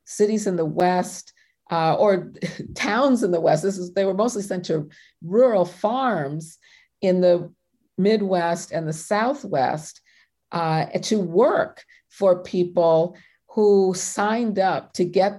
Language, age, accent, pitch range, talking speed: English, 50-69, American, 170-205 Hz, 130 wpm